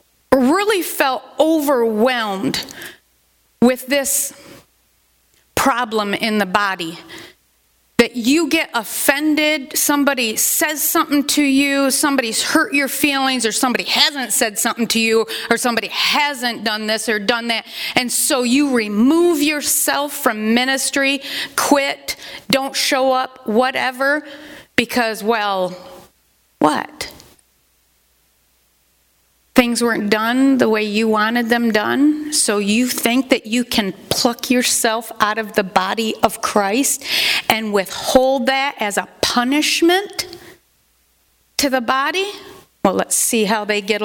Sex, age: female, 30-49